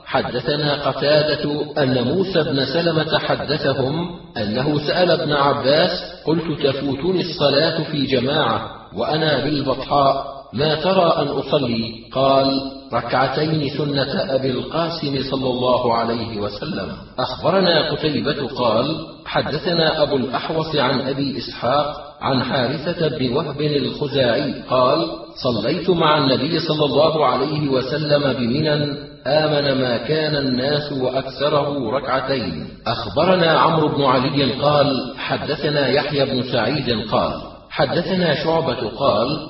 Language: Arabic